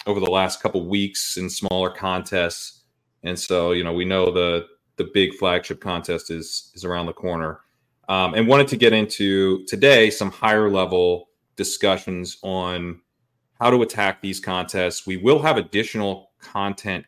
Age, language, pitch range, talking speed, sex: 30-49, English, 90-105 Hz, 165 wpm, male